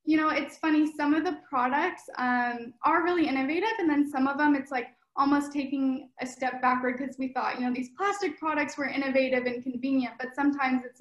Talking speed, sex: 215 wpm, female